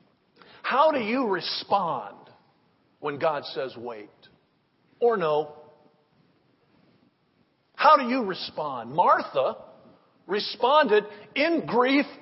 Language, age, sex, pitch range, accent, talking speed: English, 50-69, male, 190-260 Hz, American, 90 wpm